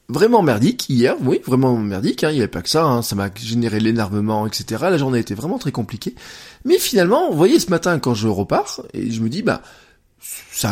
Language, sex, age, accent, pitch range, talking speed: French, male, 20-39, French, 115-155 Hz, 220 wpm